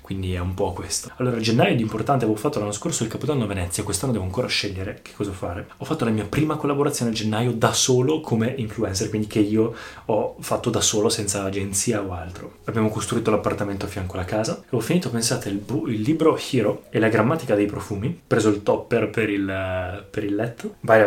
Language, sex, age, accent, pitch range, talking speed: Italian, male, 20-39, native, 105-130 Hz, 220 wpm